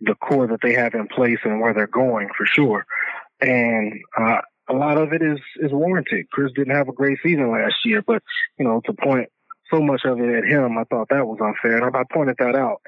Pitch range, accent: 120-145 Hz, American